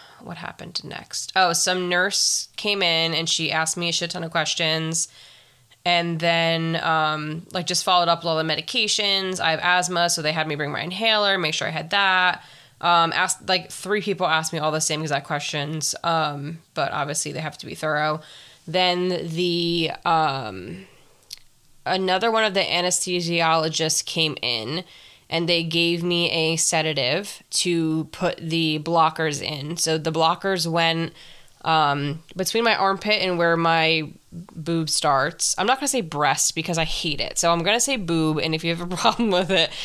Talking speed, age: 180 wpm, 20-39